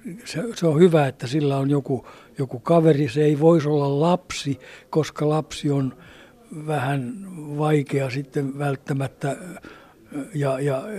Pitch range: 130-155 Hz